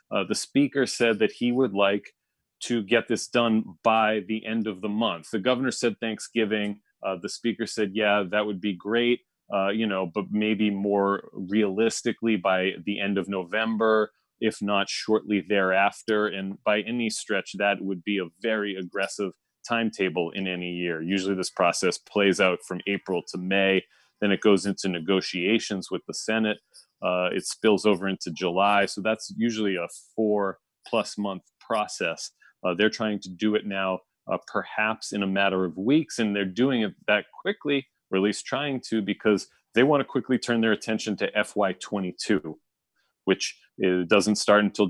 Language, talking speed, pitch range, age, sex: English, 175 wpm, 95-110 Hz, 30-49, male